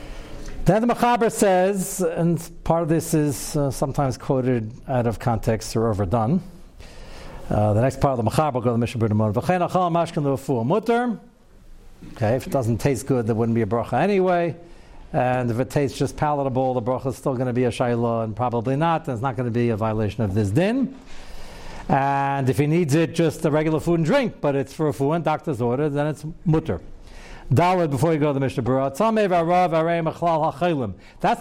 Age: 60-79